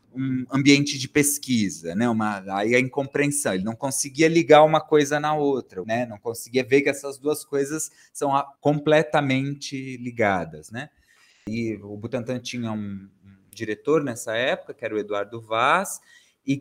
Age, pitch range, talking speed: 20-39, 125-160 Hz, 160 wpm